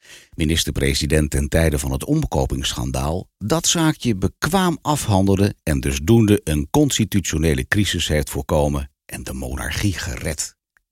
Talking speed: 115 wpm